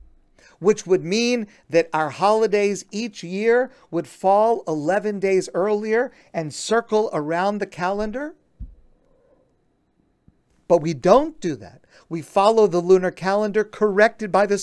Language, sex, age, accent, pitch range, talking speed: English, male, 50-69, American, 170-245 Hz, 125 wpm